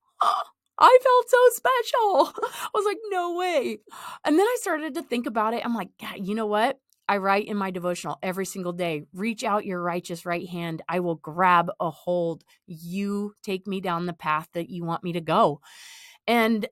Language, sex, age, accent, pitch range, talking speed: English, female, 30-49, American, 185-255 Hz, 195 wpm